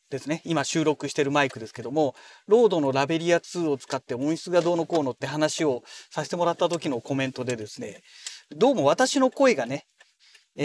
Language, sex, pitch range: Japanese, male, 140-210 Hz